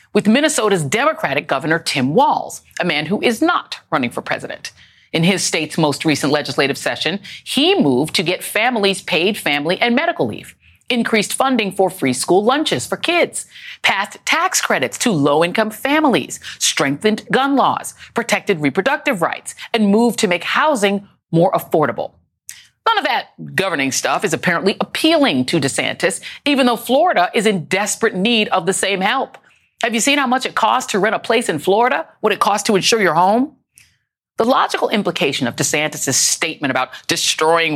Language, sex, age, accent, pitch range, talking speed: English, female, 40-59, American, 170-245 Hz, 170 wpm